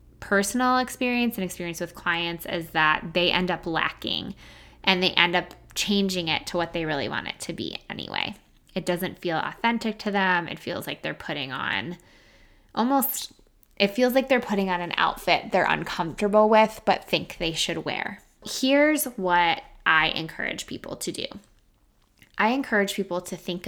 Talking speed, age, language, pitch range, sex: 170 wpm, 10-29, English, 175-235 Hz, female